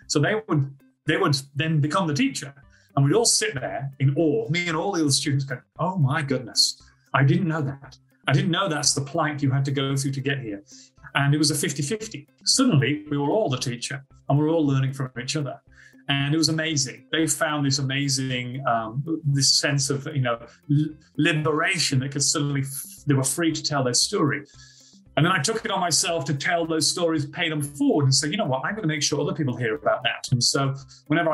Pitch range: 130-155 Hz